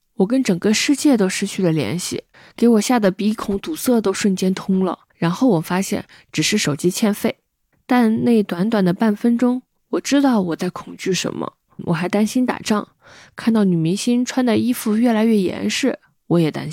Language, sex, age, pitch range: Chinese, female, 20-39, 180-245 Hz